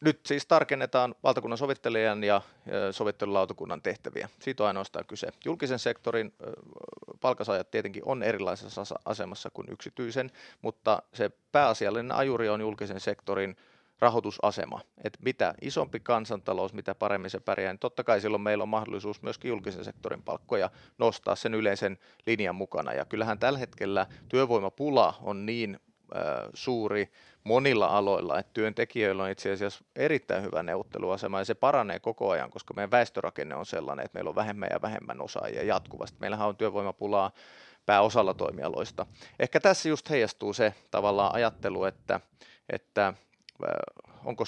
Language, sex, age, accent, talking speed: Finnish, male, 30-49, native, 140 wpm